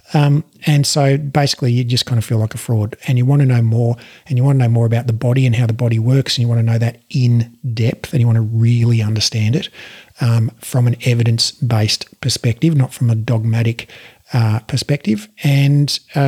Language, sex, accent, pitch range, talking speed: English, male, Australian, 120-140 Hz, 220 wpm